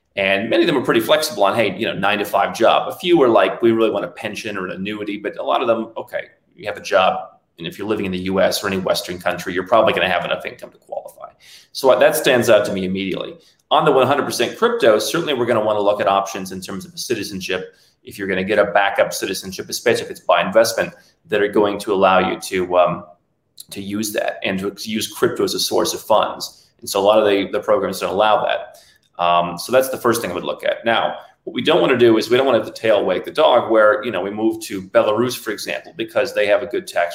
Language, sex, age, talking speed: English, male, 30-49, 265 wpm